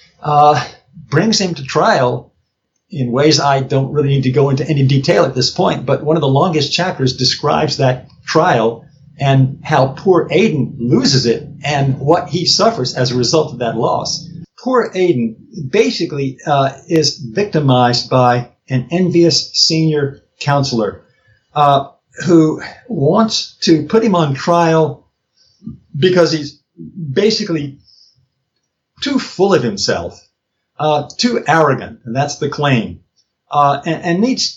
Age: 50-69